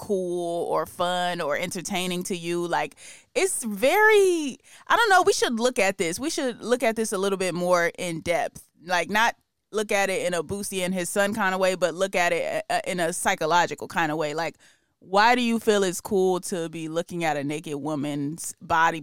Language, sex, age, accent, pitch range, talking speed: English, female, 20-39, American, 170-210 Hz, 215 wpm